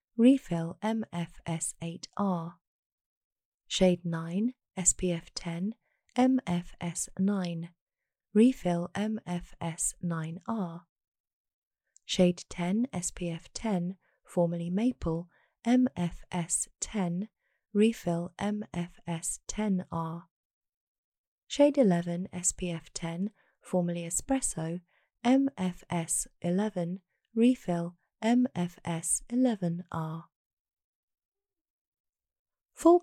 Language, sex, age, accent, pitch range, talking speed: English, female, 30-49, British, 170-215 Hz, 65 wpm